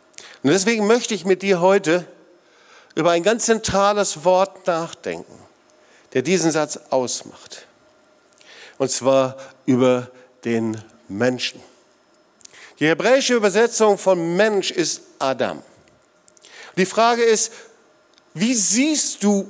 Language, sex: German, male